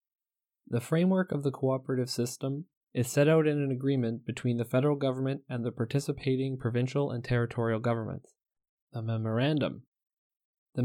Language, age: English, 20-39